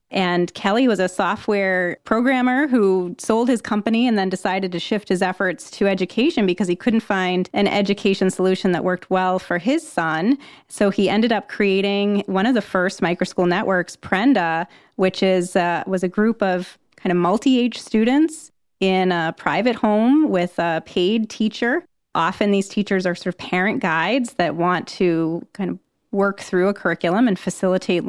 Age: 30-49